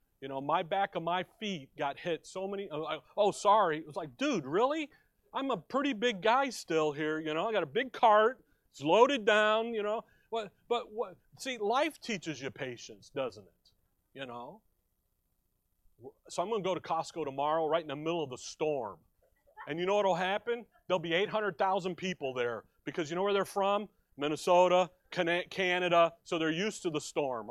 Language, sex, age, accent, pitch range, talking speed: English, male, 40-59, American, 150-205 Hz, 190 wpm